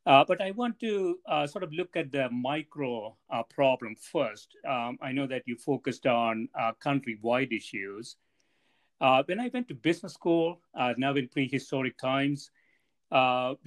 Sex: male